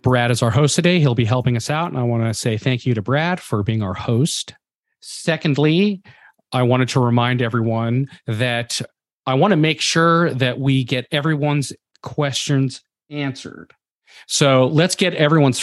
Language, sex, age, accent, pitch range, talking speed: English, male, 40-59, American, 115-145 Hz, 175 wpm